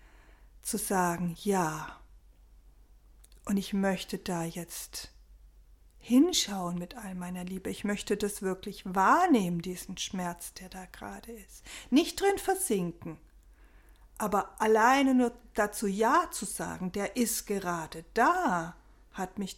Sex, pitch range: female, 190-240 Hz